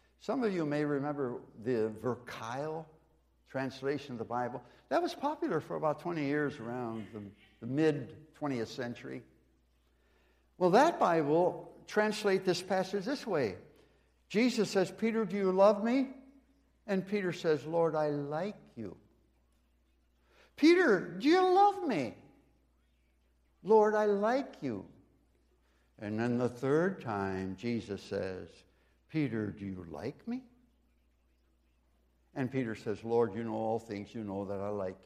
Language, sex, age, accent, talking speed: English, male, 60-79, American, 135 wpm